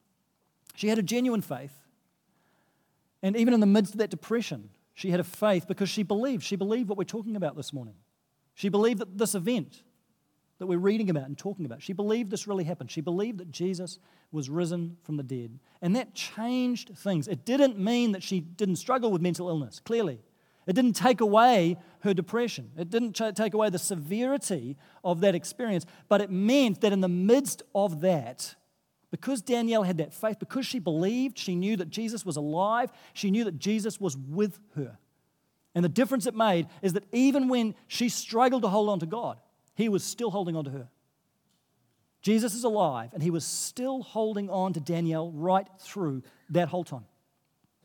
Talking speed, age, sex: 190 wpm, 40-59, male